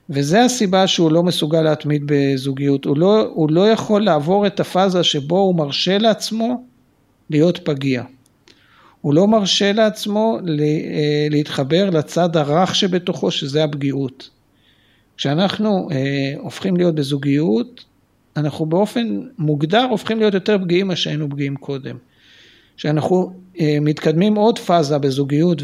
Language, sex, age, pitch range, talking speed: Hebrew, male, 50-69, 140-190 Hz, 125 wpm